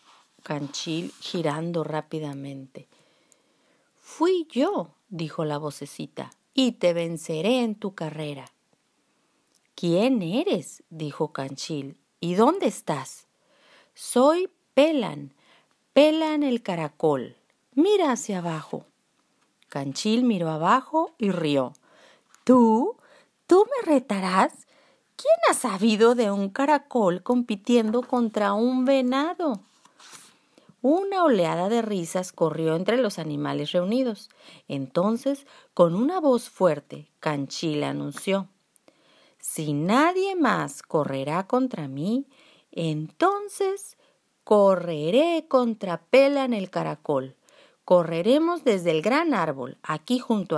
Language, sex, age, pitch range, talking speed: Spanish, female, 40-59, 165-265 Hz, 100 wpm